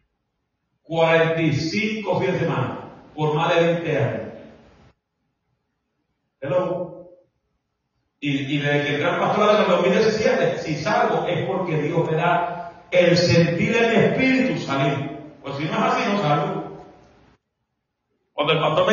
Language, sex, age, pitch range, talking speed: Spanish, male, 30-49, 145-180 Hz, 135 wpm